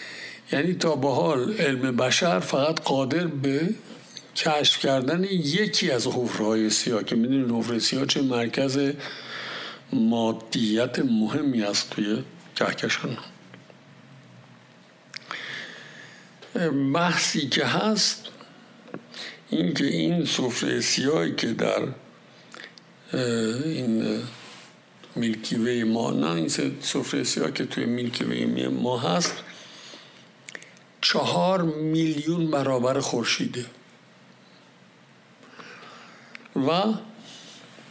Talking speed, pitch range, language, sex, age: 85 wpm, 120-175 Hz, Persian, male, 60-79